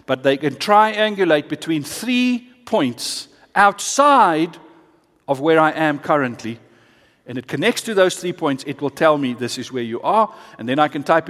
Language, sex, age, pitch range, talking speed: English, male, 50-69, 140-200 Hz, 180 wpm